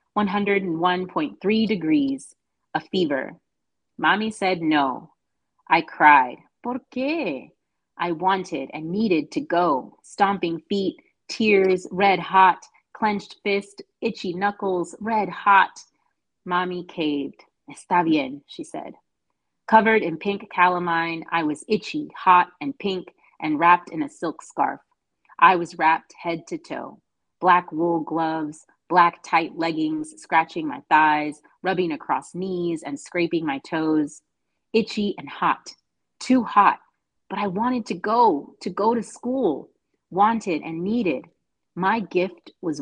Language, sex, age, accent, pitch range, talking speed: English, female, 30-49, American, 165-215 Hz, 130 wpm